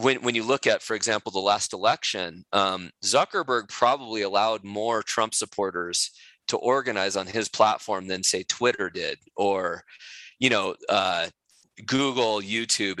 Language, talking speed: English, 150 wpm